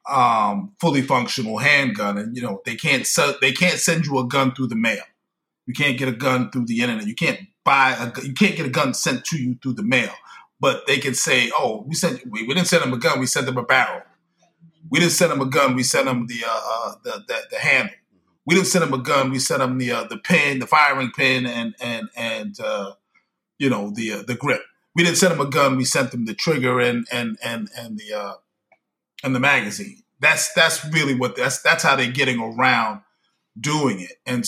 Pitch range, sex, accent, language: 125-180 Hz, male, American, English